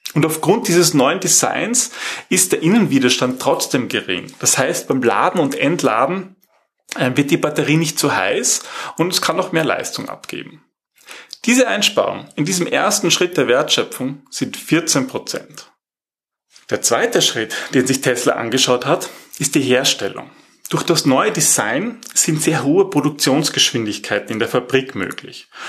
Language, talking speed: German, 145 wpm